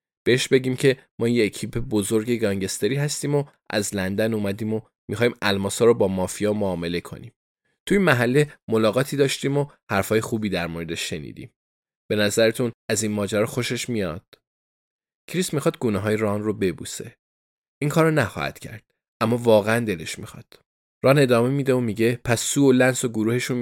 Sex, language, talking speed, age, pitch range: male, Persian, 165 wpm, 20-39, 100-125 Hz